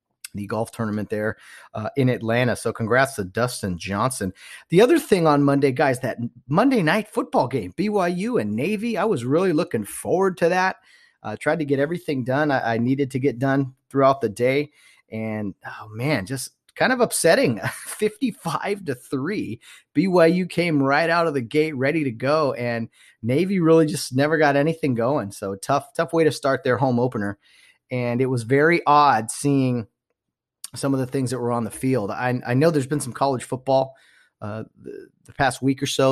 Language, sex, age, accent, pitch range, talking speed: English, male, 30-49, American, 115-145 Hz, 190 wpm